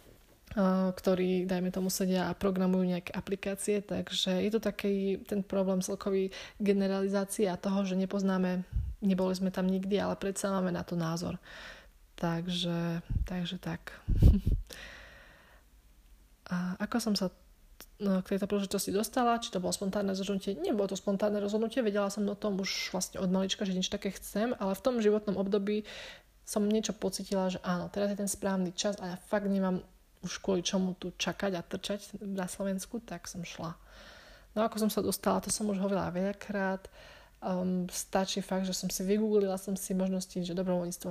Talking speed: 170 wpm